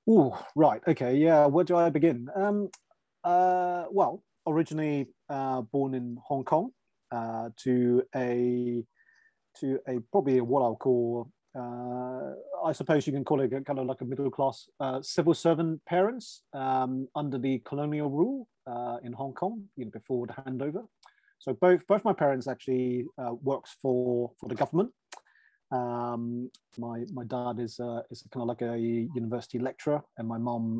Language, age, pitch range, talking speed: English, 30-49, 120-155 Hz, 165 wpm